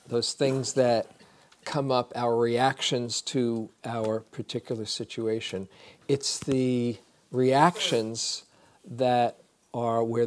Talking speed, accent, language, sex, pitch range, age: 100 wpm, American, English, male, 110-130 Hz, 40-59